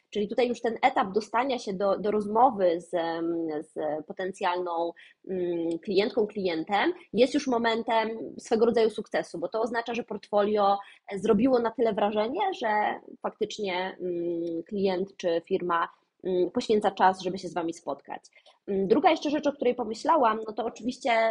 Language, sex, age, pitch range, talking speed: Polish, female, 20-39, 195-235 Hz, 145 wpm